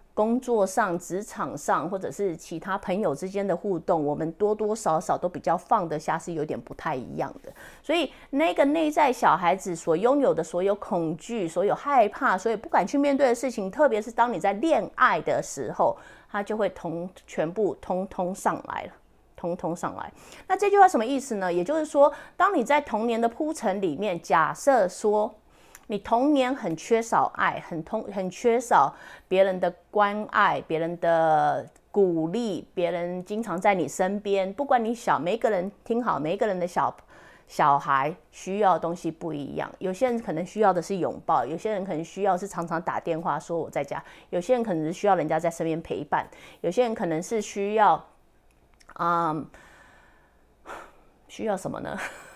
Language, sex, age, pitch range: English, female, 30-49, 170-235 Hz